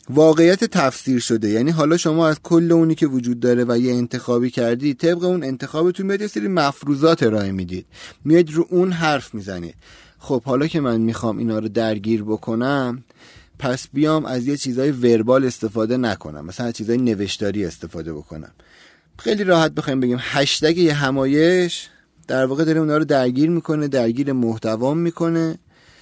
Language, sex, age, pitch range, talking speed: Persian, male, 30-49, 110-150 Hz, 150 wpm